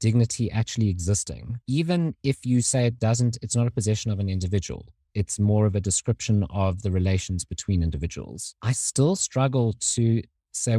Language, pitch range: English, 100-145 Hz